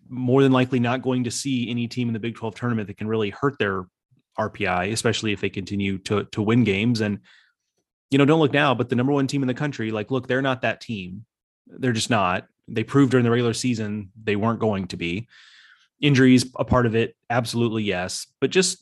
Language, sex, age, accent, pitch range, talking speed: English, male, 30-49, American, 105-125 Hz, 225 wpm